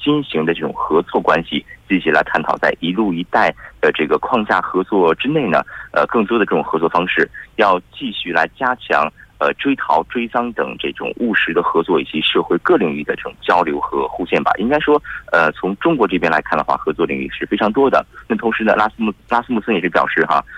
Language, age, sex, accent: Korean, 30-49, male, Chinese